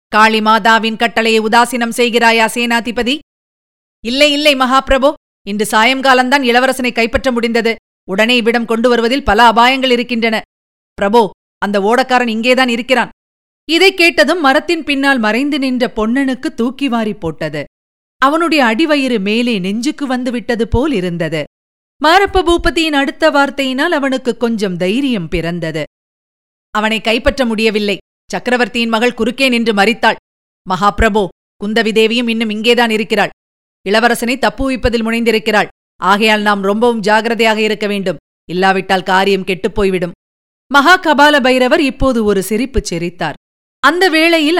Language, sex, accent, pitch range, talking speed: Tamil, female, native, 215-265 Hz, 110 wpm